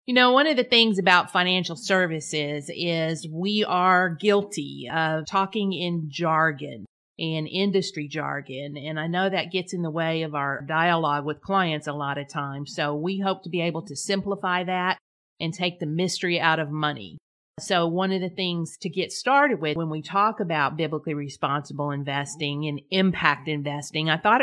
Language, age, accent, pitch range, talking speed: English, 40-59, American, 155-185 Hz, 180 wpm